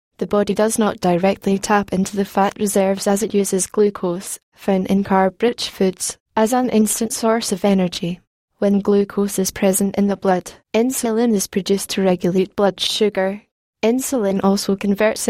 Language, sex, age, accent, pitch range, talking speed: English, female, 10-29, British, 190-220 Hz, 160 wpm